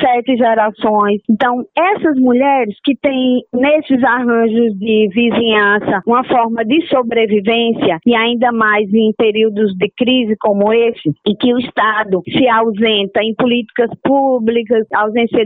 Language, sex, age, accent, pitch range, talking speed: Portuguese, female, 20-39, Brazilian, 210-260 Hz, 130 wpm